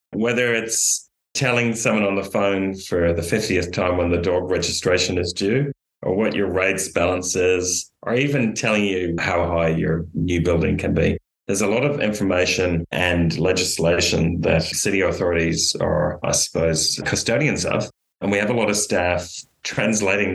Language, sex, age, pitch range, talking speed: English, male, 30-49, 85-95 Hz, 170 wpm